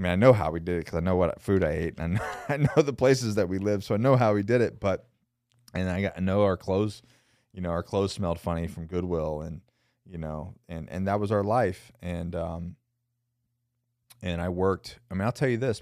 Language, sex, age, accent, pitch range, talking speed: English, male, 30-49, American, 80-115 Hz, 260 wpm